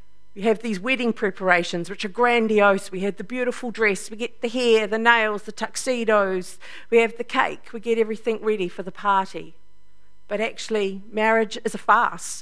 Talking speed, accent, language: 185 wpm, Australian, English